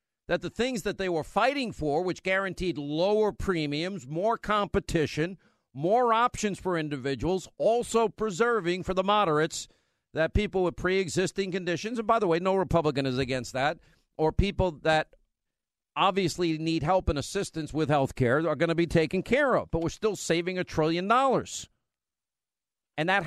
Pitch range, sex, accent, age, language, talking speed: 155-200 Hz, male, American, 50-69, English, 160 wpm